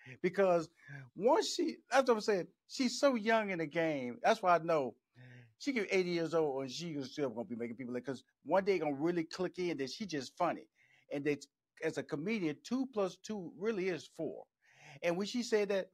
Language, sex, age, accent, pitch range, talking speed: English, male, 40-59, American, 135-185 Hz, 220 wpm